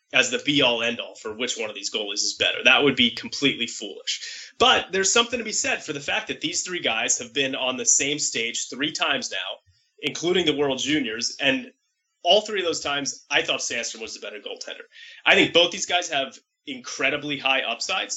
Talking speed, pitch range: 215 wpm, 125-205 Hz